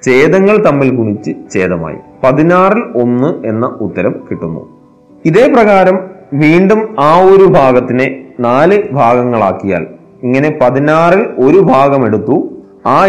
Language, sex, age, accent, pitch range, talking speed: Malayalam, male, 30-49, native, 115-170 Hz, 105 wpm